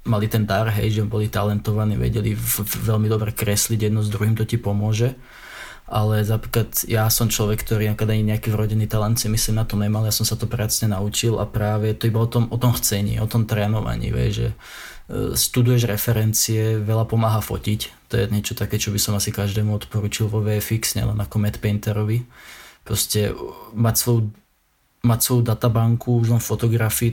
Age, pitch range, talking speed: 20-39, 105-115 Hz, 185 wpm